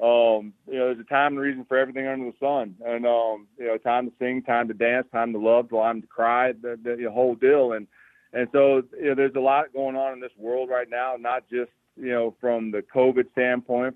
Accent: American